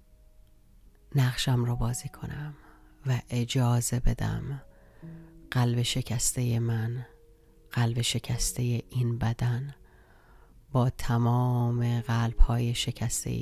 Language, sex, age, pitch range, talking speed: Persian, female, 40-59, 115-145 Hz, 85 wpm